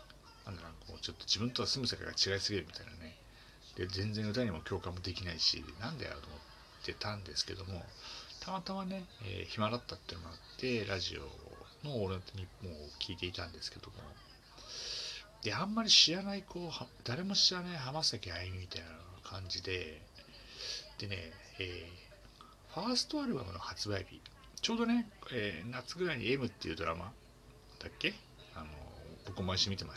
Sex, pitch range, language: male, 90-130 Hz, Japanese